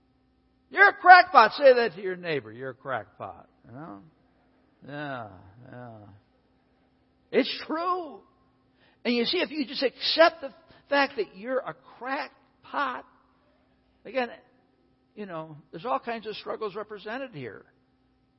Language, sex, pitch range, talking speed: English, male, 130-215 Hz, 130 wpm